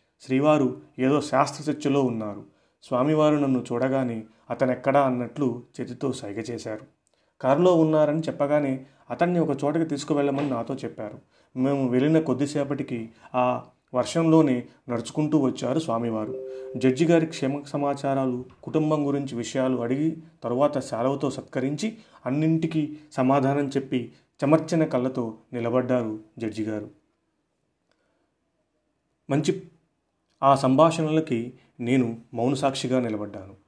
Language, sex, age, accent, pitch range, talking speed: Telugu, male, 30-49, native, 120-145 Hz, 95 wpm